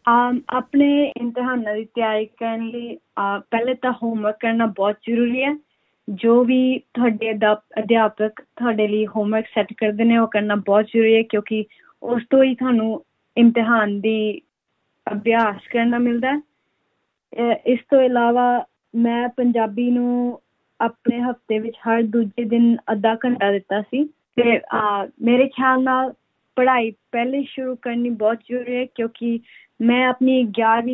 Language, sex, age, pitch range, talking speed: Punjabi, female, 20-39, 220-245 Hz, 85 wpm